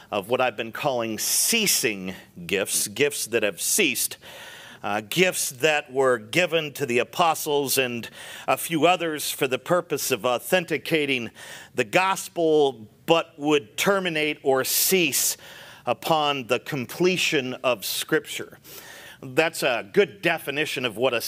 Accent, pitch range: American, 120-155 Hz